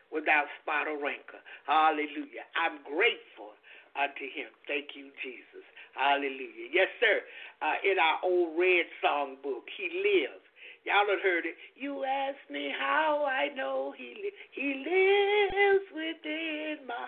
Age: 60-79